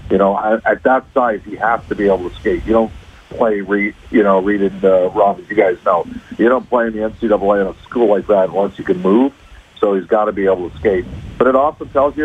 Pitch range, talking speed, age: 100-115 Hz, 265 wpm, 50-69